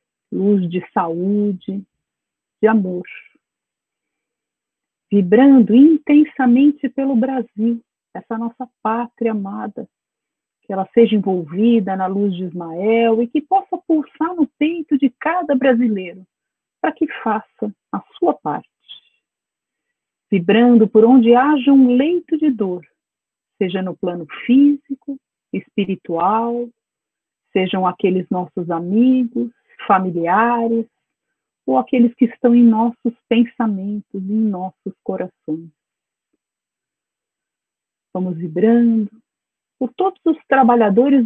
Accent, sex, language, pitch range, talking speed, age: Brazilian, female, Portuguese, 195-260 Hz, 100 wpm, 40-59